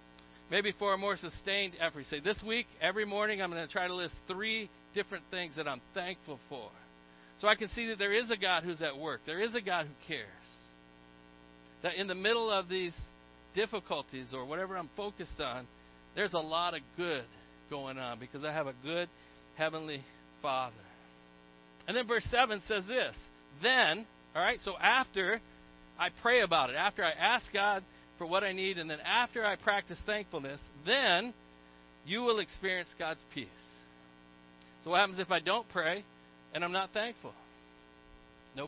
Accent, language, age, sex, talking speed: American, English, 50-69, male, 180 wpm